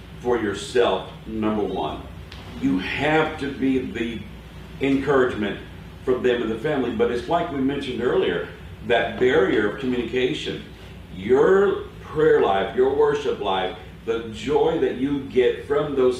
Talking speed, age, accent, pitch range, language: 140 wpm, 50-69, American, 110-155 Hz, English